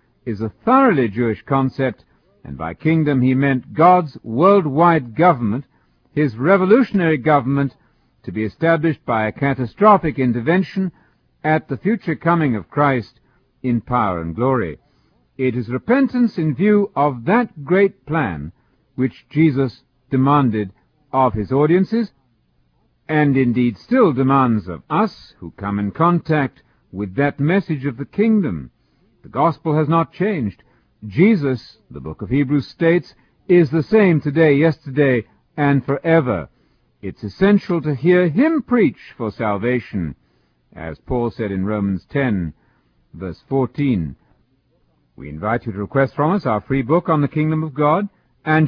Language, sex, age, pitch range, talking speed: English, male, 60-79, 115-165 Hz, 140 wpm